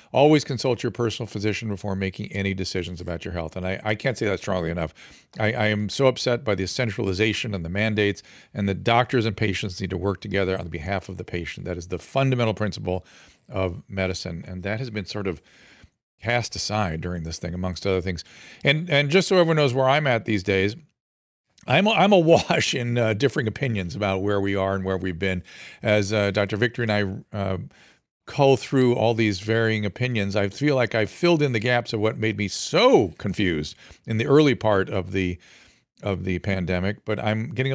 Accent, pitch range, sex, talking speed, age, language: American, 95-125 Hz, male, 210 wpm, 50-69, English